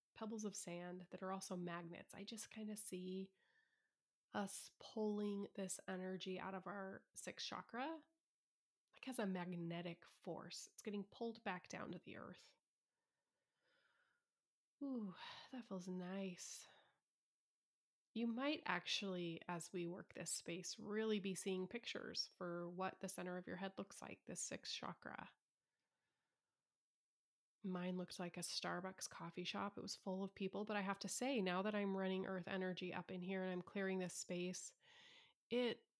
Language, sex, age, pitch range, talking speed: English, female, 20-39, 185-220 Hz, 155 wpm